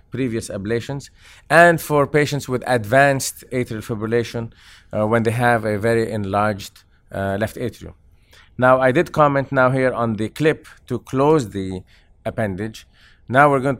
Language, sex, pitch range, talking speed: English, male, 105-135 Hz, 150 wpm